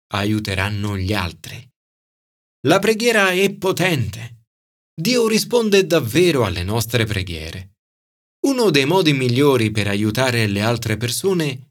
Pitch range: 100-135 Hz